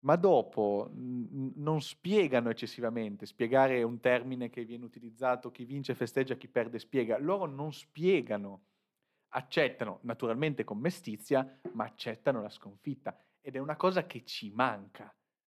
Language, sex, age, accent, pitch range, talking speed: Italian, male, 30-49, native, 110-150 Hz, 140 wpm